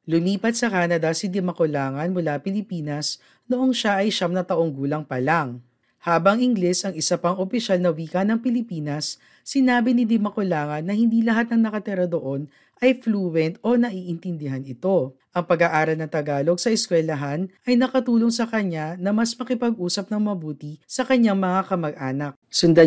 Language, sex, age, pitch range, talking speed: Filipino, female, 40-59, 160-215 Hz, 160 wpm